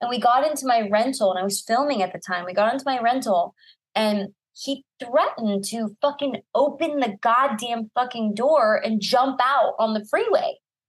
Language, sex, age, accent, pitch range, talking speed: English, female, 20-39, American, 215-290 Hz, 185 wpm